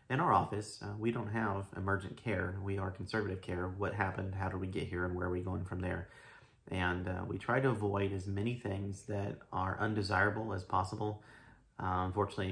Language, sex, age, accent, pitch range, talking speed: English, male, 30-49, American, 95-110 Hz, 205 wpm